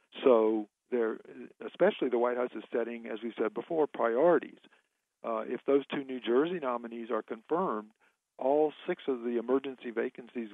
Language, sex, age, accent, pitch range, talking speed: English, male, 50-69, American, 115-130 Hz, 155 wpm